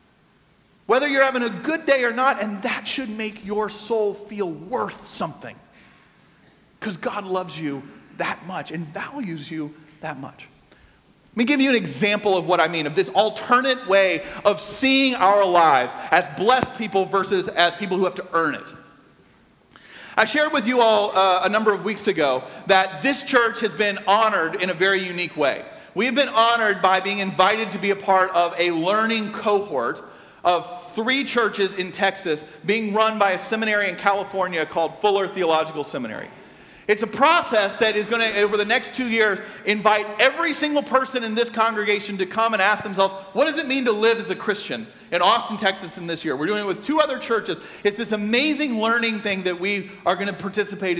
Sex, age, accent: male, 40-59, American